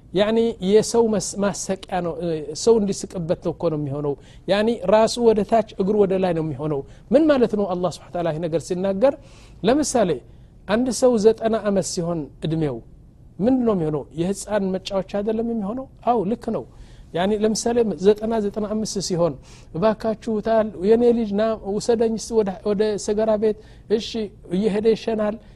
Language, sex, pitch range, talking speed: Amharic, male, 180-225 Hz, 140 wpm